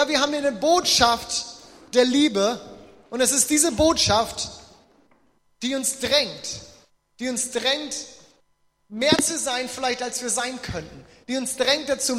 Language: German